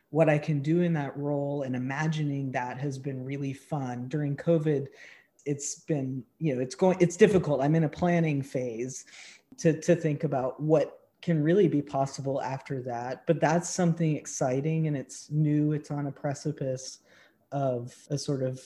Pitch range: 140-170 Hz